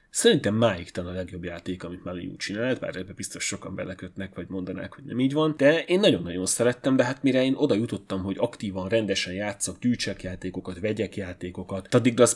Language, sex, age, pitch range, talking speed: Hungarian, male, 30-49, 95-125 Hz, 205 wpm